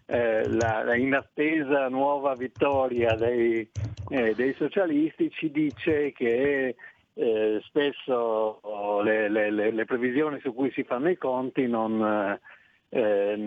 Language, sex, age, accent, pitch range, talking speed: Italian, male, 50-69, native, 115-145 Hz, 125 wpm